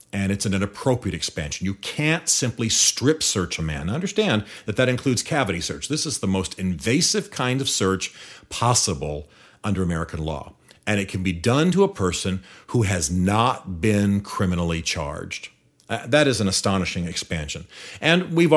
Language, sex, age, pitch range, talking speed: English, male, 40-59, 95-125 Hz, 165 wpm